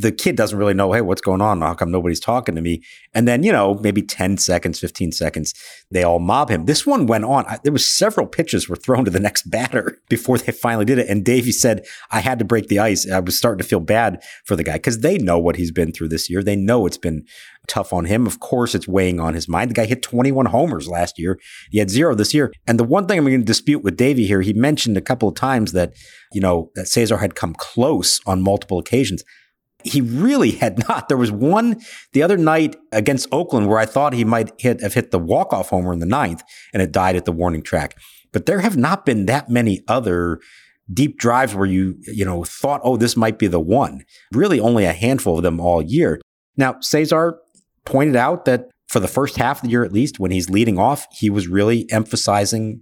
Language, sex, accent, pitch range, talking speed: English, male, American, 90-125 Hz, 240 wpm